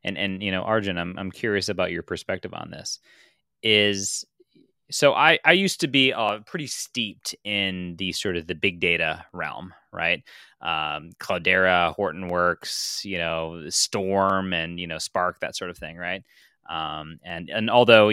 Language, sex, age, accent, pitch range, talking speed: English, male, 20-39, American, 90-125 Hz, 170 wpm